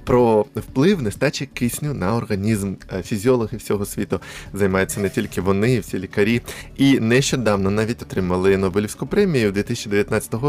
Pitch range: 100-130 Hz